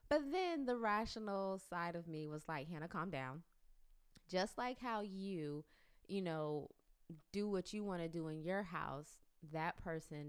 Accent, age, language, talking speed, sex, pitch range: American, 20-39, English, 165 wpm, female, 155-210 Hz